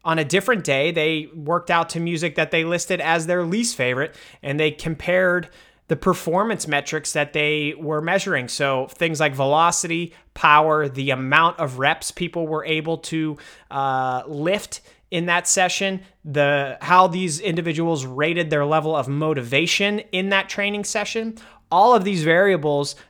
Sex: male